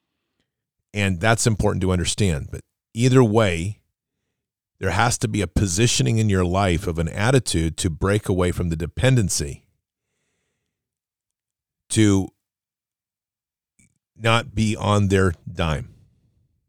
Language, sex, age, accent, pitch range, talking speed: English, male, 40-59, American, 90-115 Hz, 115 wpm